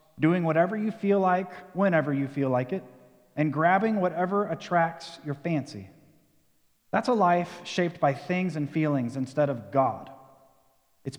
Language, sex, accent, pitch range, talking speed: English, male, American, 135-175 Hz, 150 wpm